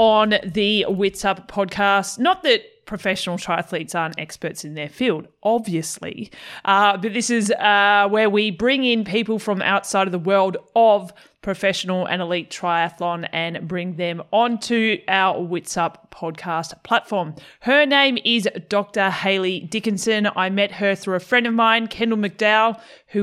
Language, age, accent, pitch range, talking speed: English, 30-49, Australian, 180-225 Hz, 155 wpm